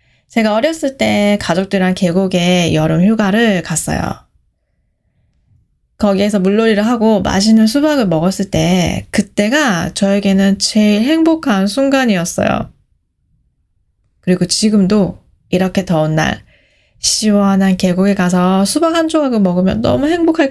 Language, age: Korean, 20-39